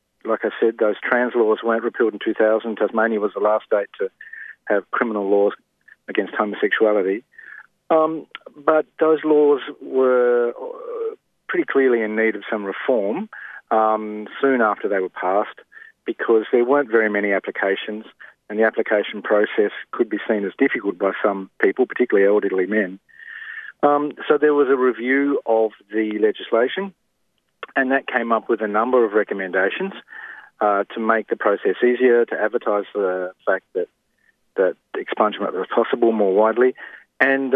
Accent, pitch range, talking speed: Australian, 105-155 Hz, 155 wpm